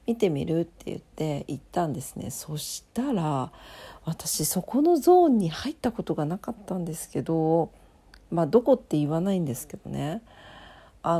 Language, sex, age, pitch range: Japanese, female, 50-69, 165-260 Hz